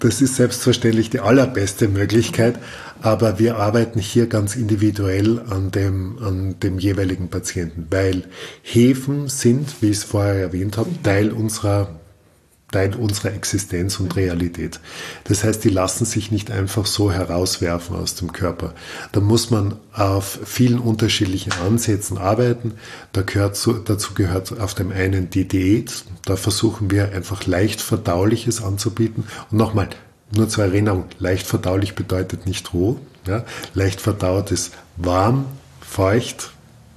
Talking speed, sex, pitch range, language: 135 wpm, male, 100-115 Hz, German